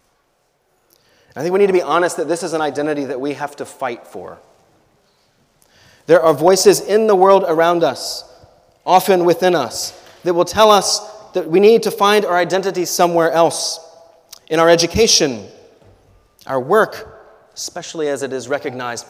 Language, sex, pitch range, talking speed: English, male, 145-180 Hz, 165 wpm